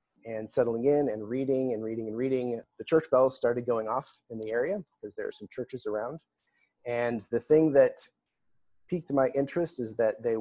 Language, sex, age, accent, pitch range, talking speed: English, male, 30-49, American, 110-135 Hz, 195 wpm